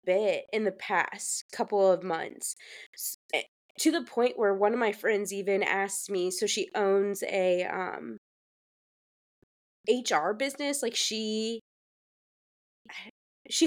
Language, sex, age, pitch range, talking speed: English, female, 20-39, 195-240 Hz, 125 wpm